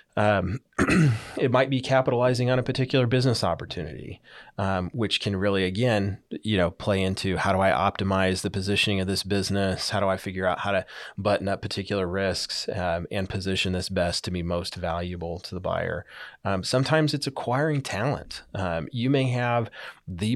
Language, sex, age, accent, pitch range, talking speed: English, male, 30-49, American, 90-110 Hz, 180 wpm